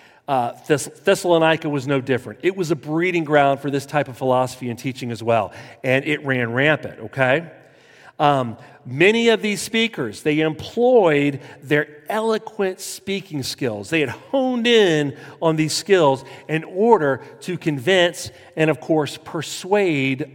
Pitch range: 135-180 Hz